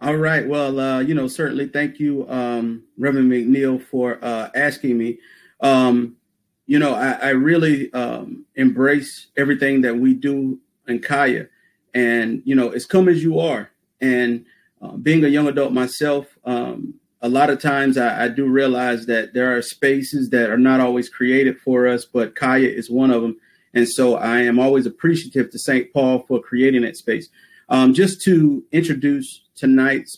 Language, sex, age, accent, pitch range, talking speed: English, male, 30-49, American, 125-145 Hz, 175 wpm